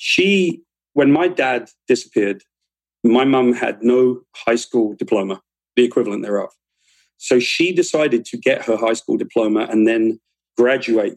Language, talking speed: English, 145 wpm